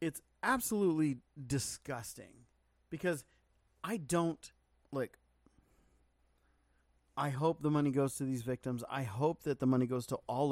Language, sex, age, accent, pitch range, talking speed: English, male, 40-59, American, 110-145 Hz, 130 wpm